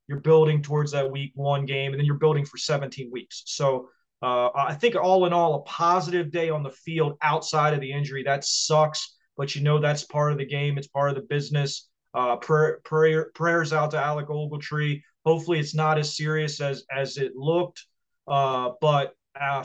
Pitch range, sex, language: 135-160 Hz, male, English